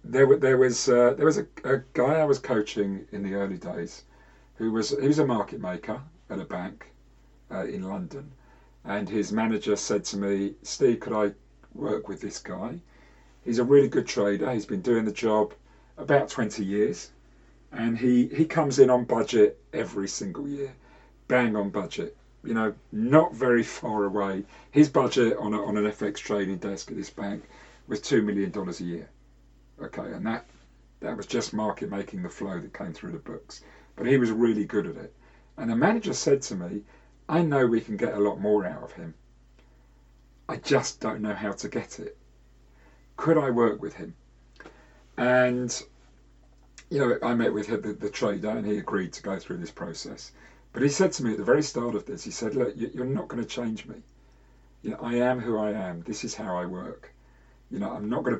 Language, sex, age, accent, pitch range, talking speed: English, male, 40-59, British, 90-125 Hz, 200 wpm